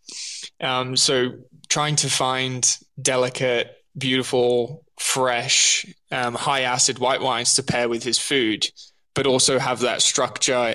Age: 20-39